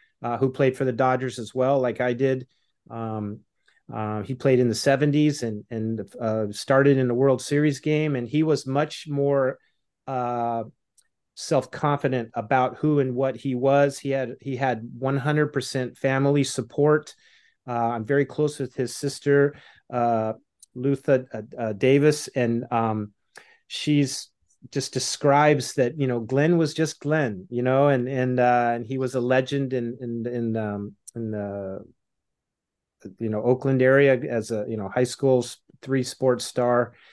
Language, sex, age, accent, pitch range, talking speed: English, male, 30-49, American, 120-150 Hz, 165 wpm